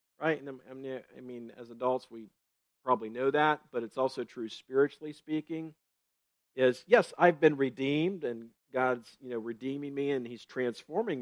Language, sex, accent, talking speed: English, male, American, 160 wpm